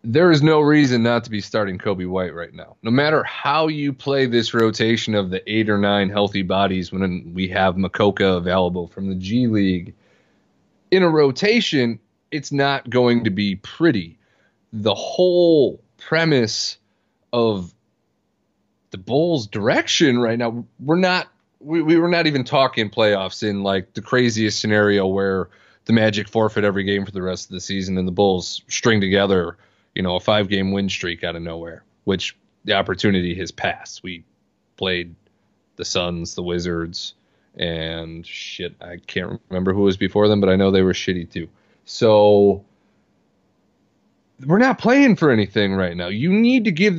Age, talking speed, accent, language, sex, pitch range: 30-49, 165 wpm, American, English, male, 95-140 Hz